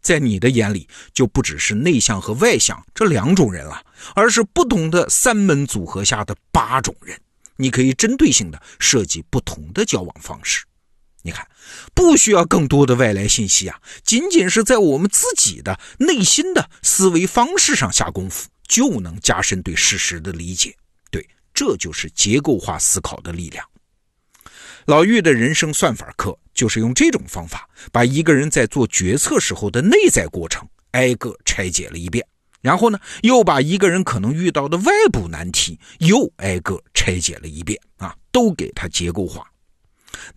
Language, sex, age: Chinese, male, 50-69